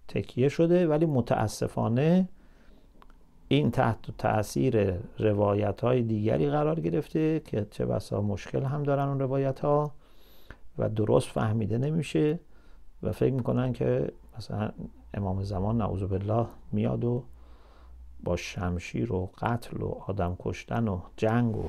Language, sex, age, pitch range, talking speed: English, male, 50-69, 90-125 Hz, 125 wpm